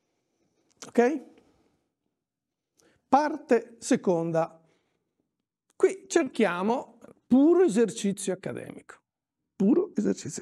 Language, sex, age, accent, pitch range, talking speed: Italian, male, 50-69, native, 190-285 Hz, 60 wpm